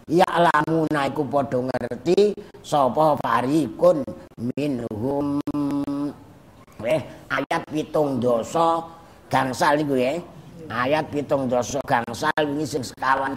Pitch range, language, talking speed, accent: 125-170 Hz, Indonesian, 80 wpm, American